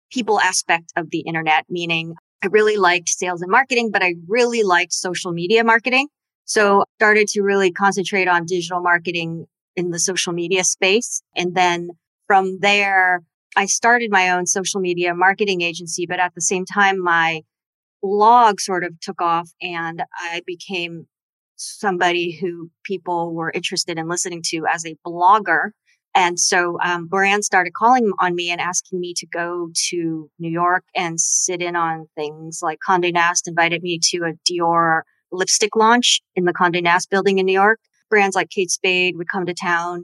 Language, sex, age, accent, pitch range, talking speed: English, female, 30-49, American, 170-195 Hz, 175 wpm